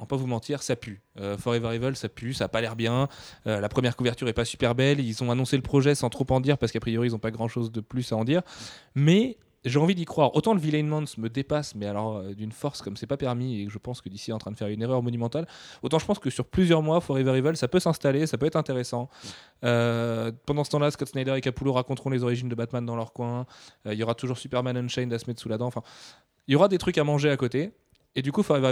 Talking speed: 295 wpm